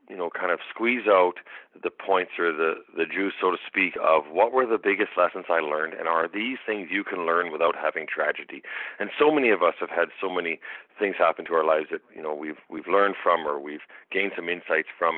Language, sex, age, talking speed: English, male, 40-59, 235 wpm